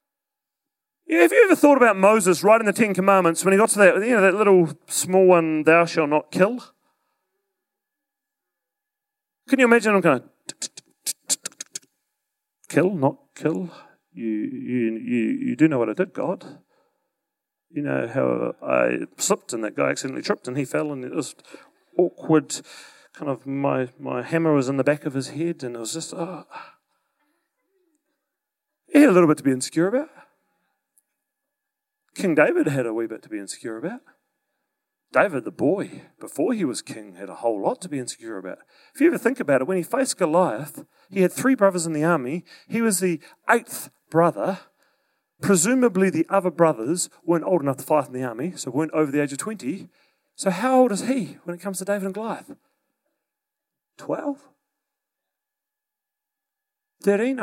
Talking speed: 175 wpm